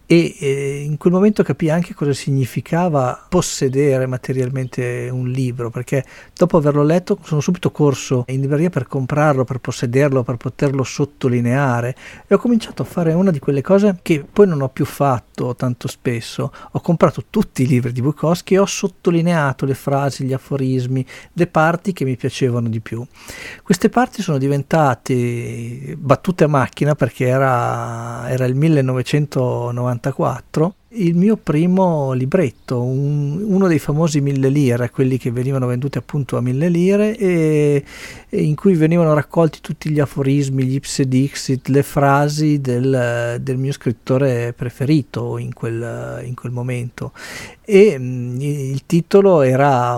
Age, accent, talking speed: 50-69, native, 150 wpm